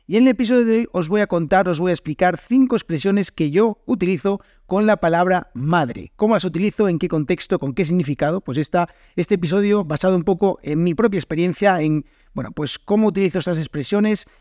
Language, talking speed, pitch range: Spanish, 210 wpm, 160-205 Hz